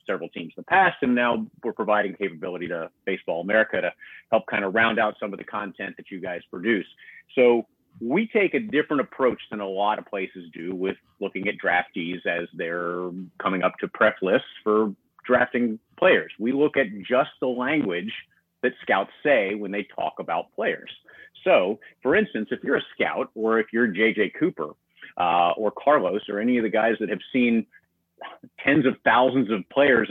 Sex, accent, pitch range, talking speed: male, American, 100-125 Hz, 190 wpm